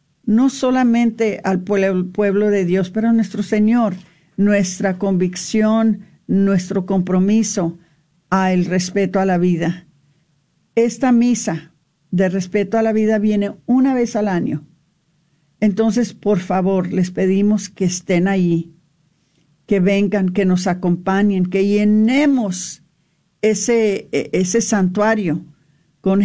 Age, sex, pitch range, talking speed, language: 50-69, female, 180-225 Hz, 115 wpm, Spanish